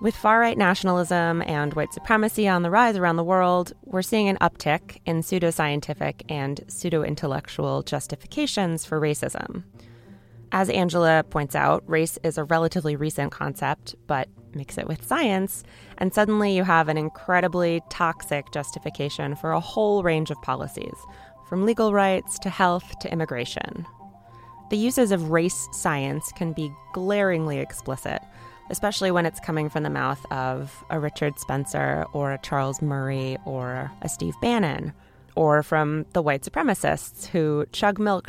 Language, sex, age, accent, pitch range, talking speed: English, female, 20-39, American, 135-185 Hz, 150 wpm